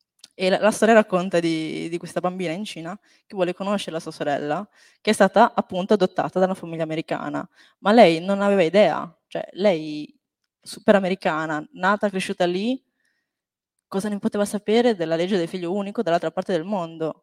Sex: female